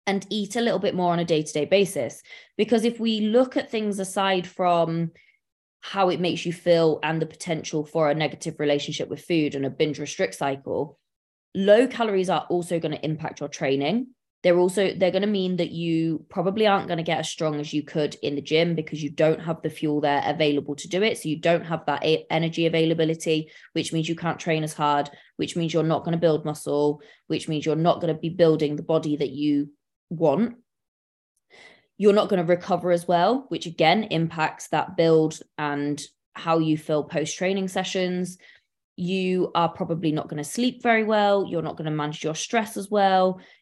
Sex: female